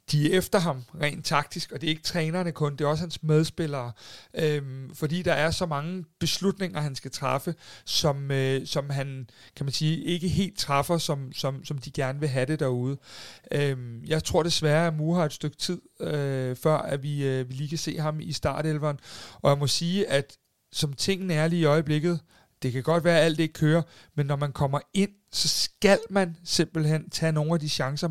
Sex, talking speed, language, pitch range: male, 215 wpm, Danish, 140-170 Hz